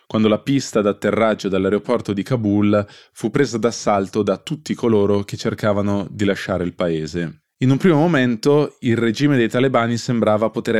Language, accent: Italian, native